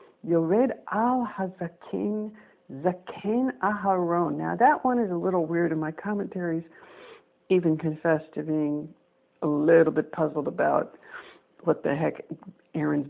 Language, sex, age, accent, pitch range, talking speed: English, female, 60-79, American, 160-200 Hz, 105 wpm